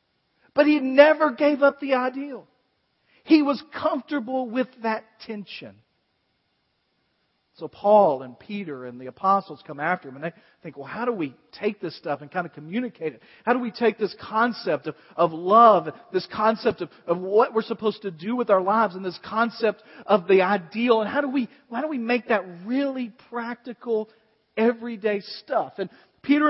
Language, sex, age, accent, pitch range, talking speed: English, male, 40-59, American, 205-270 Hz, 185 wpm